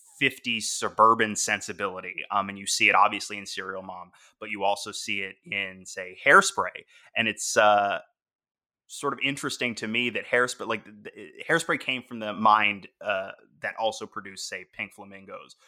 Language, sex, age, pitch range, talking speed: English, male, 20-39, 105-125 Hz, 170 wpm